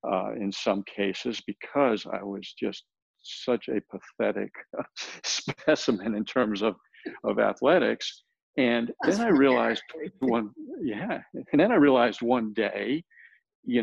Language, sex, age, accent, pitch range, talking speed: English, male, 50-69, American, 105-140 Hz, 135 wpm